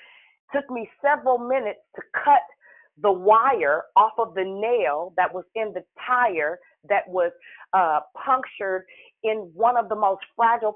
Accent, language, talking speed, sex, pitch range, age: American, English, 150 wpm, female, 200-275 Hz, 40-59